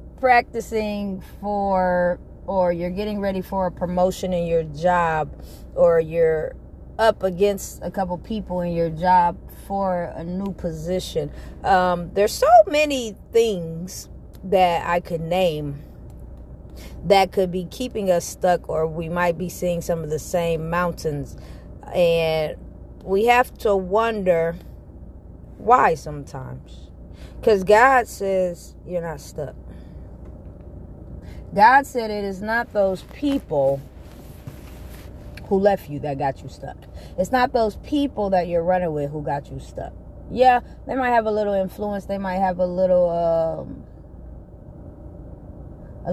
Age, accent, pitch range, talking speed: 30-49, American, 165-205 Hz, 135 wpm